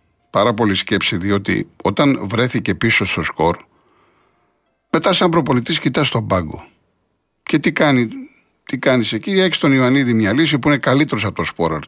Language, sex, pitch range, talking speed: Greek, male, 105-150 Hz, 165 wpm